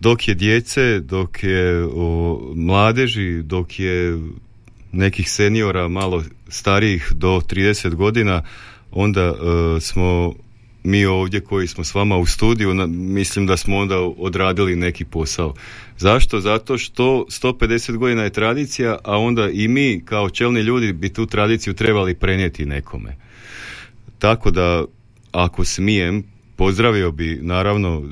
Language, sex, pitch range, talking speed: Croatian, male, 90-110 Hz, 130 wpm